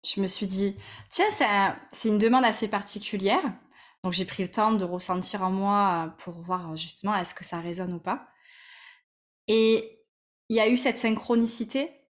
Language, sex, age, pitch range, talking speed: French, female, 20-39, 195-245 Hz, 180 wpm